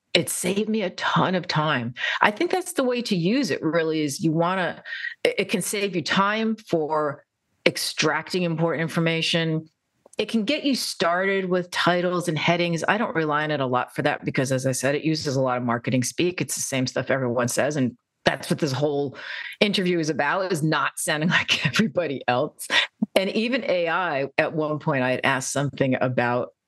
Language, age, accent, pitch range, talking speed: English, 40-59, American, 135-185 Hz, 200 wpm